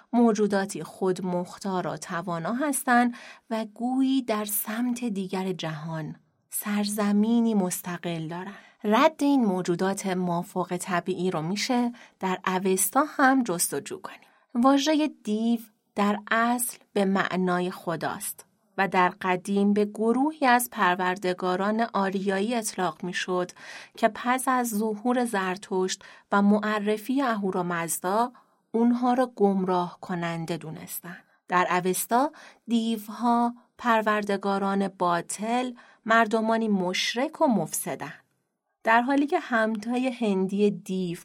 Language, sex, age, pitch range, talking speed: Persian, female, 30-49, 185-235 Hz, 105 wpm